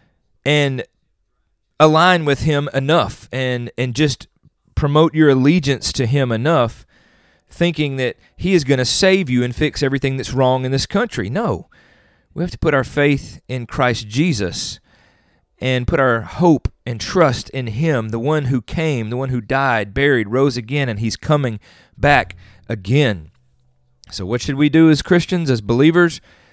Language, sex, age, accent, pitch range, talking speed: English, male, 40-59, American, 105-140 Hz, 165 wpm